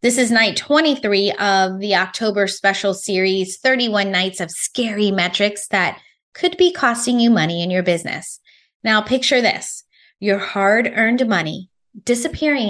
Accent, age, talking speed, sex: American, 20-39, 145 wpm, female